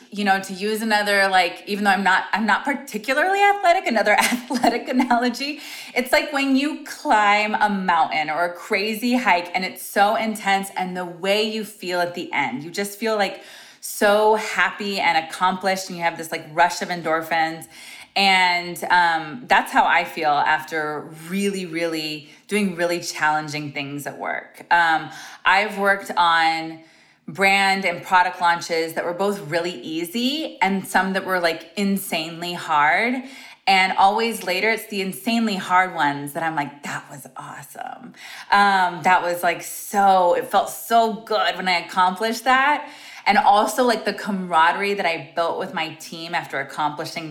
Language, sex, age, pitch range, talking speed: English, female, 20-39, 175-220 Hz, 165 wpm